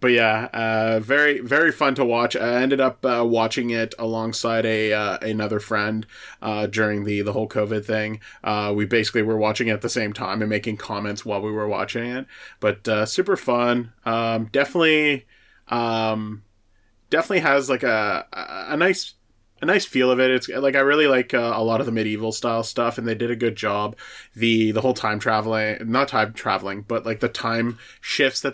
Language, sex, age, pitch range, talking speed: English, male, 30-49, 105-125 Hz, 200 wpm